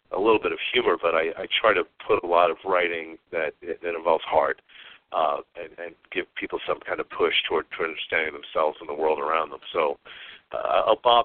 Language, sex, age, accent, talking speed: English, male, 50-69, American, 220 wpm